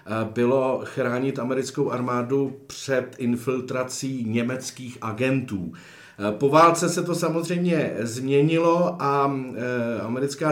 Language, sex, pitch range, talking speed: Czech, male, 130-150 Hz, 90 wpm